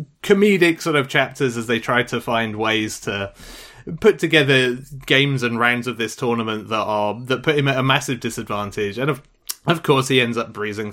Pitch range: 115-150 Hz